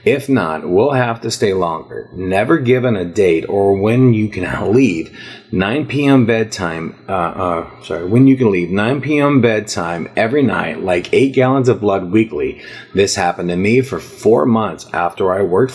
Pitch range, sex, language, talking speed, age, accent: 95-130 Hz, male, English, 180 wpm, 30-49, American